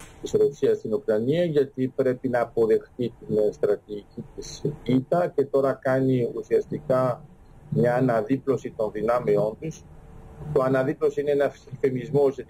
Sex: male